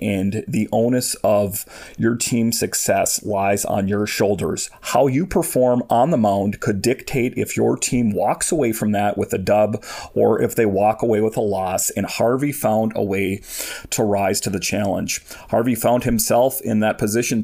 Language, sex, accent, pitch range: English, male, American, 105-120 Hz